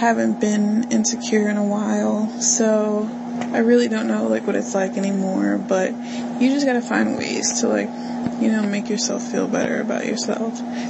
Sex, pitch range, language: female, 215-245 Hz, English